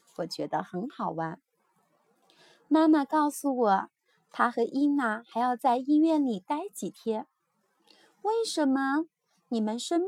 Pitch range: 210-295 Hz